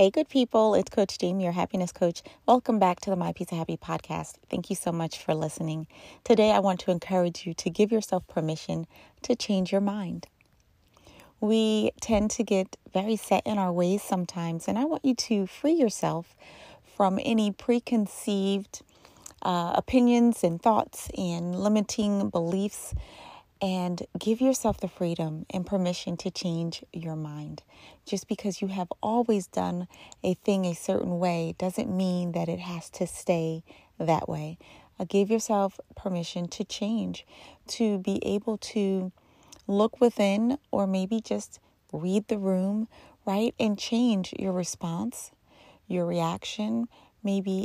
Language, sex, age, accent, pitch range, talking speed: English, female, 30-49, American, 180-220 Hz, 150 wpm